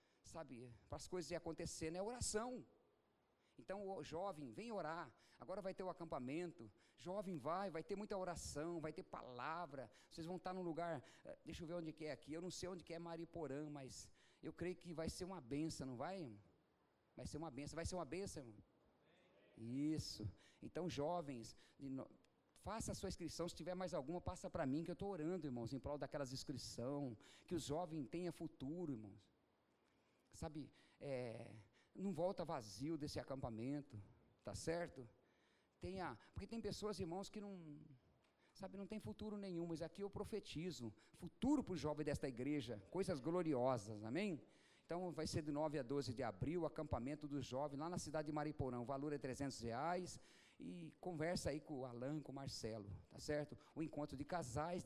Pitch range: 135-175 Hz